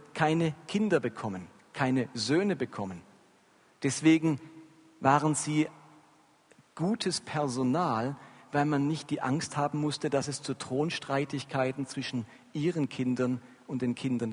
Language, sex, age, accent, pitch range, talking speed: German, male, 50-69, German, 130-180 Hz, 115 wpm